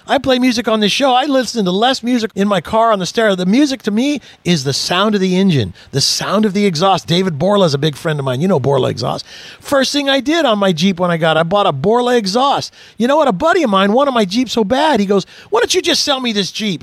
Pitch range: 150-225 Hz